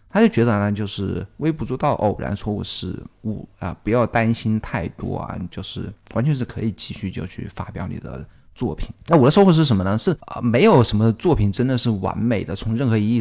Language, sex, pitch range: Chinese, male, 105-130 Hz